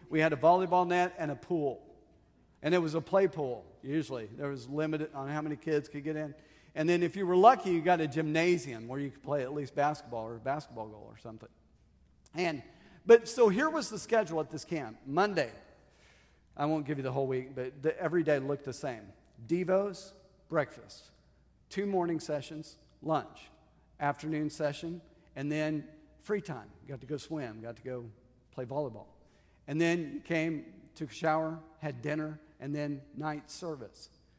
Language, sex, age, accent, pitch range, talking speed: English, male, 50-69, American, 145-185 Hz, 185 wpm